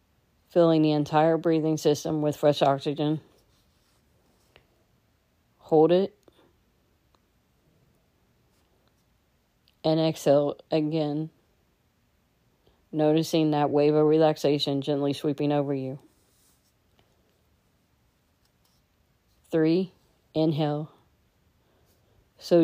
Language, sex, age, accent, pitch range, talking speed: English, female, 40-59, American, 145-160 Hz, 65 wpm